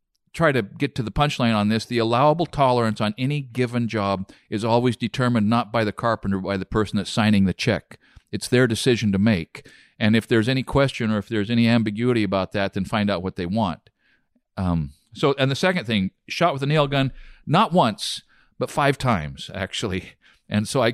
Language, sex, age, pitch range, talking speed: English, male, 50-69, 105-125 Hz, 205 wpm